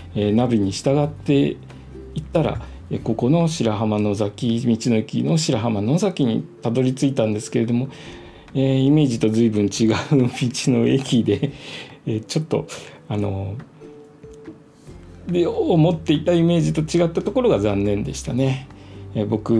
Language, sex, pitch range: Japanese, male, 110-150 Hz